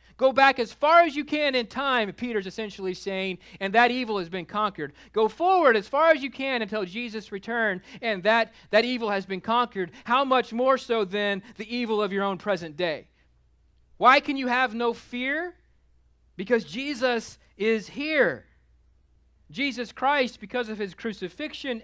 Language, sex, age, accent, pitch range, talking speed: English, male, 40-59, American, 175-245 Hz, 175 wpm